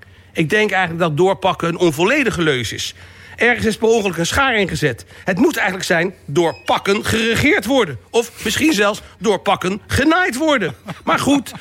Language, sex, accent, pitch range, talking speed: Dutch, male, Dutch, 170-260 Hz, 165 wpm